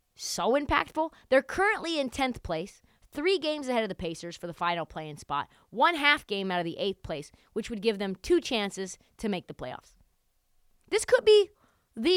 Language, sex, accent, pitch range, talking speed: English, female, American, 200-275 Hz, 195 wpm